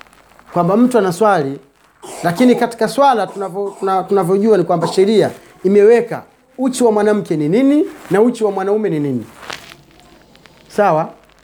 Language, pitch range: Swahili, 160-220 Hz